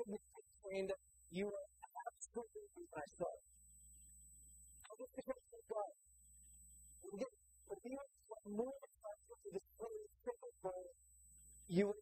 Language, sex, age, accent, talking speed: English, male, 40-59, American, 80 wpm